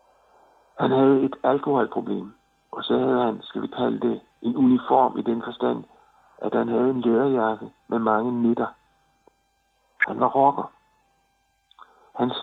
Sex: male